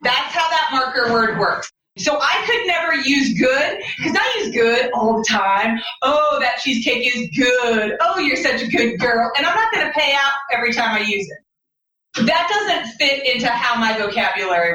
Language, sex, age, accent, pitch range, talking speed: English, female, 30-49, American, 235-330 Hz, 200 wpm